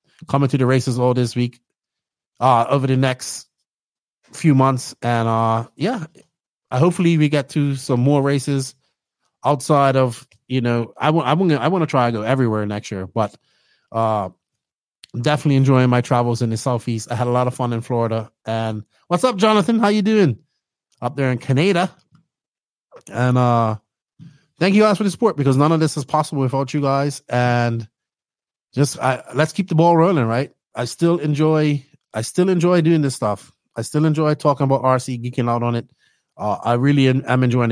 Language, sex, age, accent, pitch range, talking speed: English, male, 20-39, American, 120-150 Hz, 190 wpm